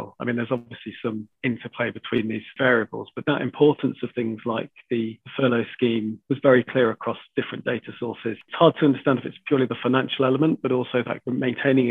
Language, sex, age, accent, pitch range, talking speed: English, male, 40-59, British, 110-130 Hz, 190 wpm